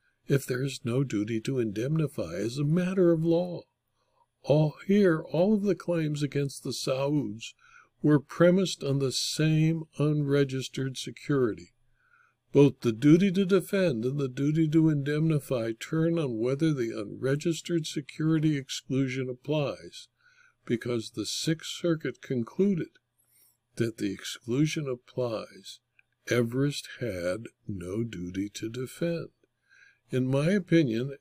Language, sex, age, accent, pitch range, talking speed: English, male, 60-79, American, 130-165 Hz, 125 wpm